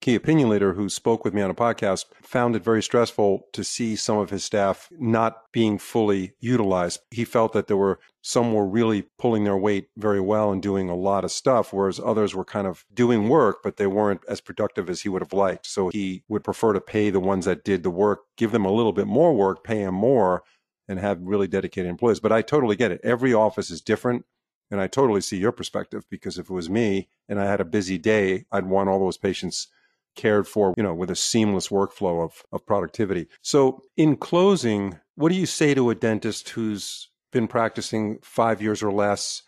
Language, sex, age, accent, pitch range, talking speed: English, male, 50-69, American, 100-115 Hz, 220 wpm